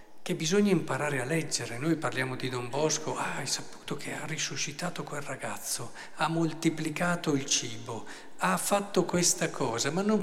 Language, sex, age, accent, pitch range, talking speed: Italian, male, 50-69, native, 130-165 Hz, 165 wpm